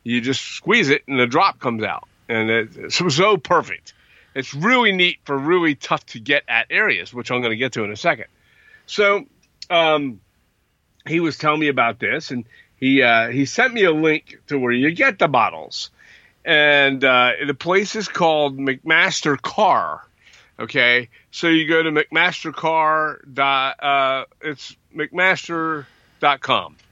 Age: 50-69